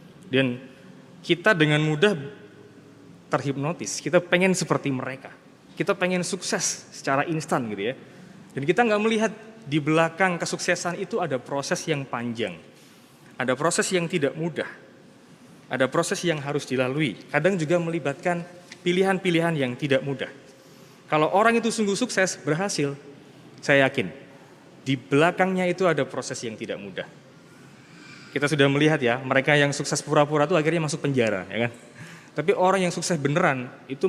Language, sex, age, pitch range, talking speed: Indonesian, male, 20-39, 140-180 Hz, 145 wpm